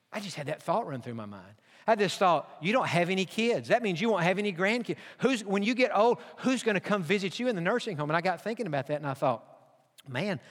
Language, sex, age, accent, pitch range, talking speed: English, male, 50-69, American, 165-210 Hz, 280 wpm